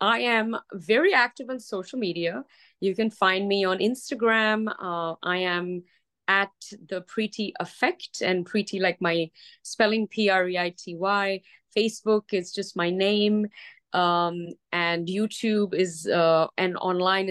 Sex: female